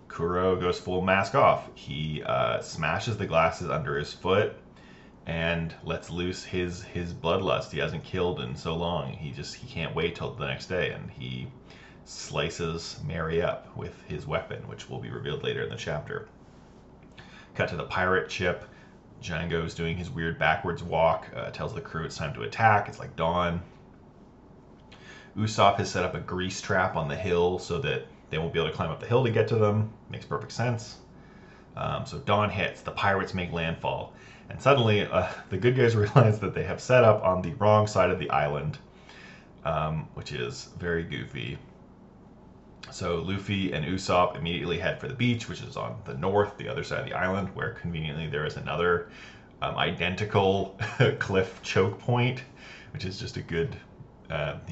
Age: 30-49